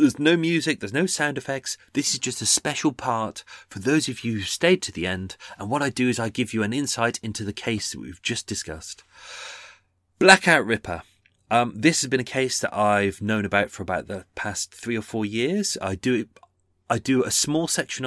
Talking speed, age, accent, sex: 225 wpm, 30-49, British, male